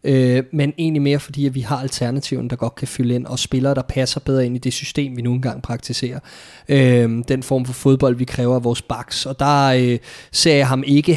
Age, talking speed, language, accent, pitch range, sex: 20-39, 235 wpm, Danish, native, 125-145 Hz, male